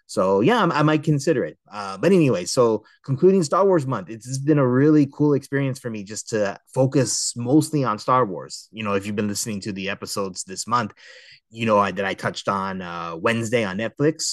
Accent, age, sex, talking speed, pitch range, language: American, 30-49, male, 210 wpm, 100-130 Hz, English